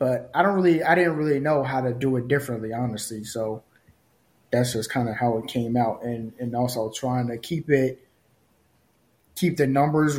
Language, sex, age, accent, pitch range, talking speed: English, male, 20-39, American, 125-150 Hz, 195 wpm